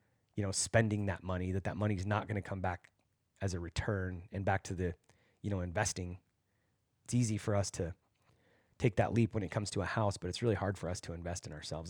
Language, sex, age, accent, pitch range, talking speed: English, male, 30-49, American, 95-115 Hz, 240 wpm